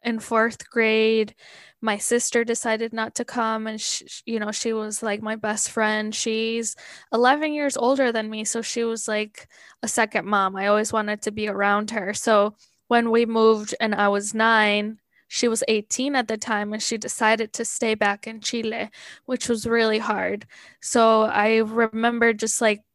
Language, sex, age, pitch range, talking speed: English, female, 10-29, 215-230 Hz, 180 wpm